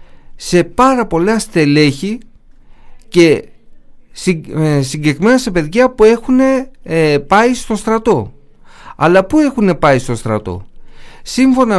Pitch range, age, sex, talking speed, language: 135-220 Hz, 50-69, male, 100 wpm, Greek